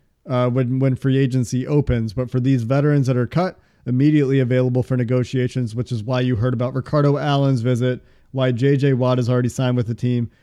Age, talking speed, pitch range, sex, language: 40-59, 200 wpm, 125-145 Hz, male, English